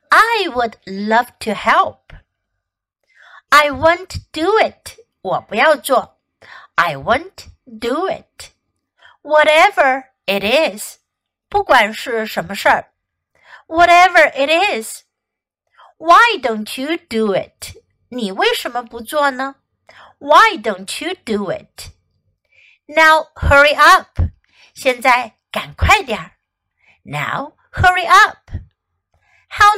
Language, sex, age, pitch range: Chinese, female, 60-79, 225-345 Hz